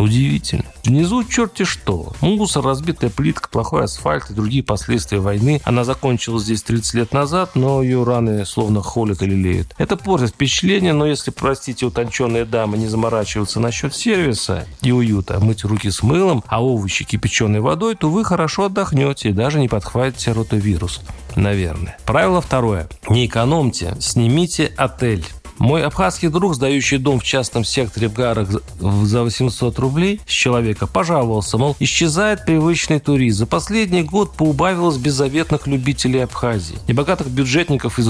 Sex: male